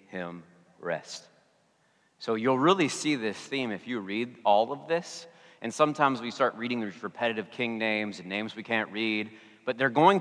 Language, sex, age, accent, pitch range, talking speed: English, male, 30-49, American, 120-175 Hz, 180 wpm